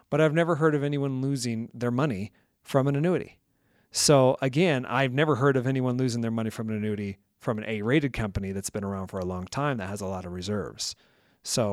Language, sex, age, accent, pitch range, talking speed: English, male, 40-59, American, 105-135 Hz, 220 wpm